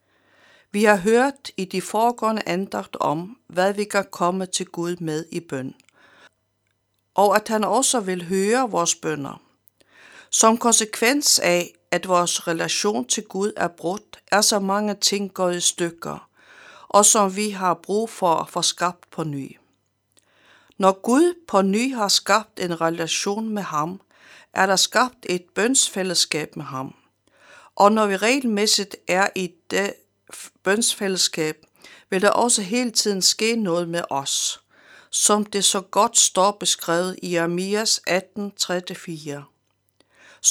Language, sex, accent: Danish, female, native